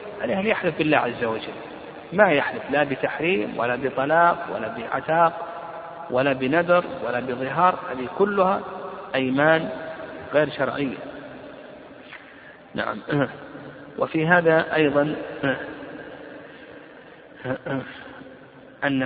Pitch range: 130-165 Hz